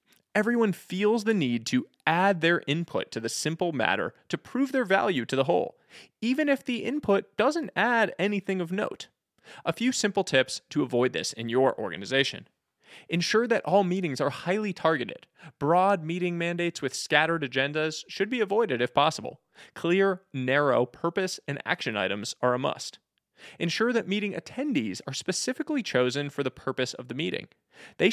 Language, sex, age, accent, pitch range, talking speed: English, male, 20-39, American, 135-195 Hz, 170 wpm